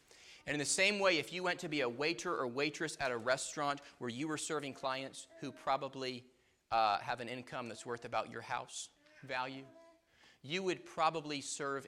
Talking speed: 190 wpm